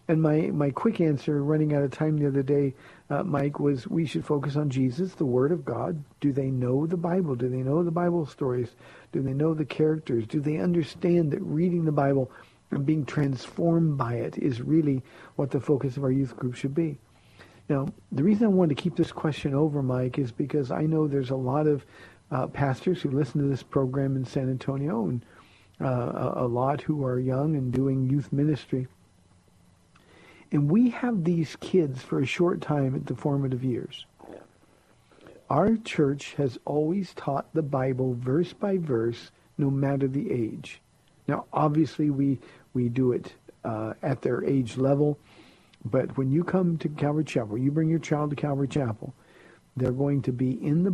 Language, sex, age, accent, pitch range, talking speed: English, male, 50-69, American, 130-155 Hz, 190 wpm